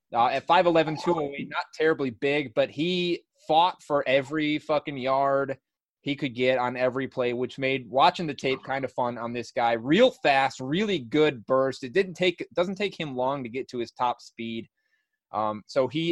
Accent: American